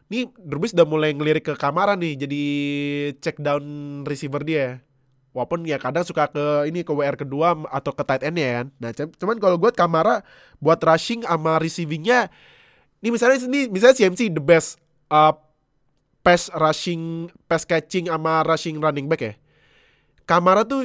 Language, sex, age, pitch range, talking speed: Indonesian, male, 20-39, 145-205 Hz, 160 wpm